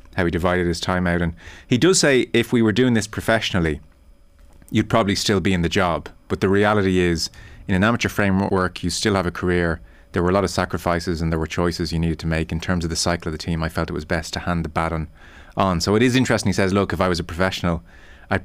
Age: 30-49